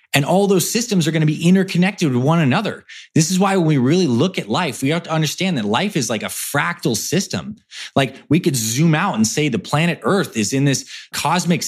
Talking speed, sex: 235 wpm, male